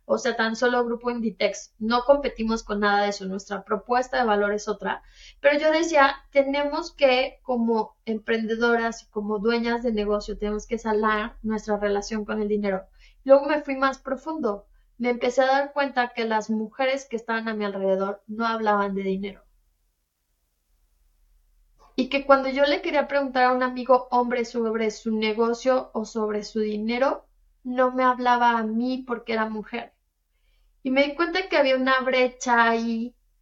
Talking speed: 170 wpm